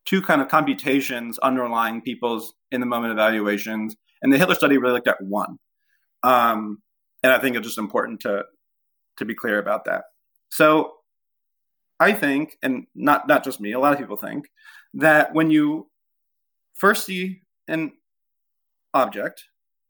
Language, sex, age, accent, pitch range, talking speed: English, male, 30-49, American, 110-170 Hz, 155 wpm